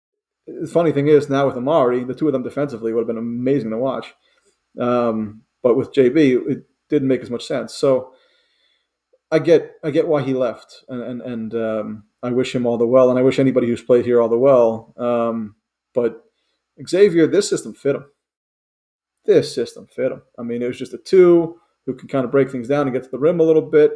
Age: 30-49